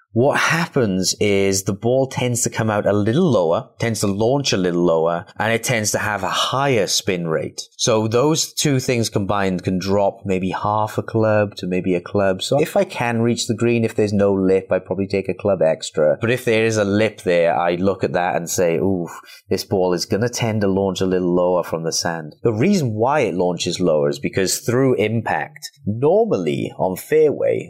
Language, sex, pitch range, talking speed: English, male, 90-115 Hz, 215 wpm